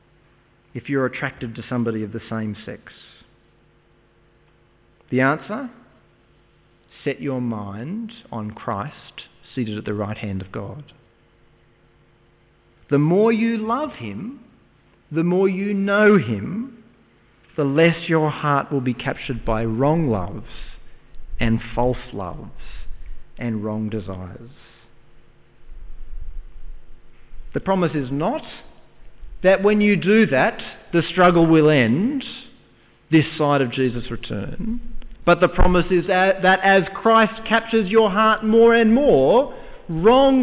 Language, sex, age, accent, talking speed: English, male, 40-59, Australian, 120 wpm